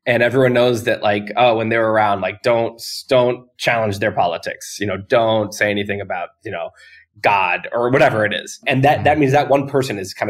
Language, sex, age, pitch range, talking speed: English, male, 20-39, 110-140 Hz, 215 wpm